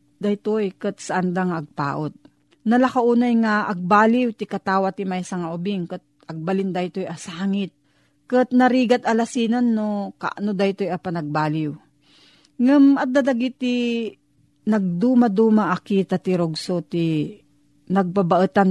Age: 40-59